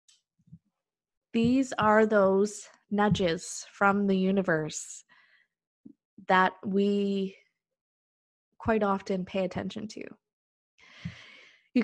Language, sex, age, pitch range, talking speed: English, female, 20-39, 190-240 Hz, 75 wpm